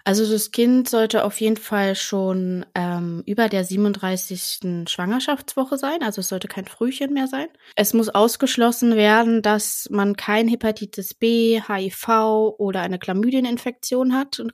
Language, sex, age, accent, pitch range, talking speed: German, female, 20-39, German, 185-220 Hz, 150 wpm